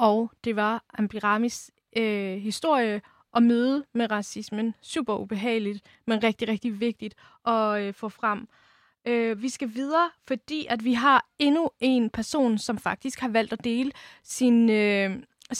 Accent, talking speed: native, 150 wpm